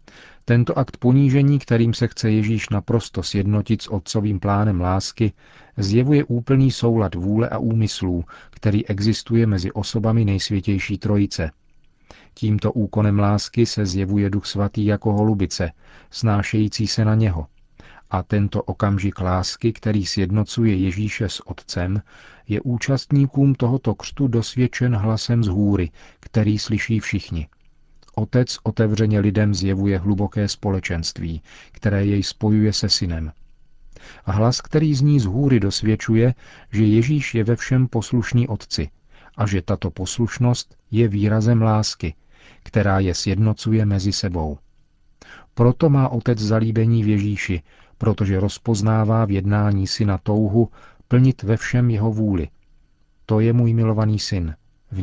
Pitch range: 100-115 Hz